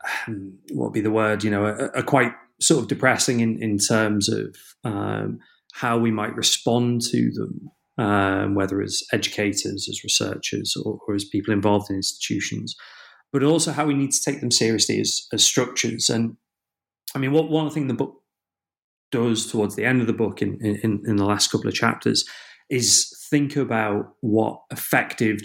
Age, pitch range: 30-49, 105-125 Hz